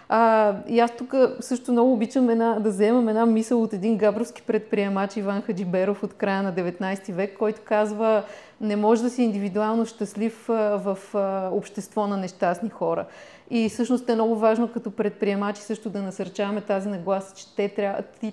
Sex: female